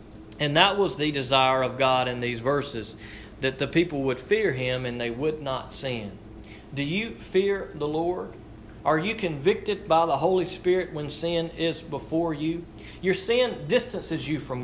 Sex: male